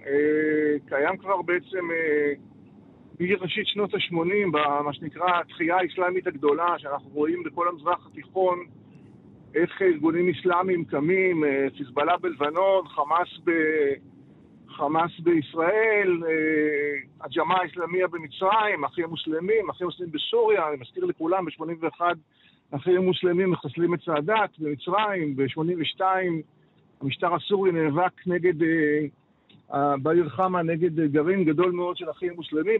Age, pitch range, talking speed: 50-69, 150-185 Hz, 105 wpm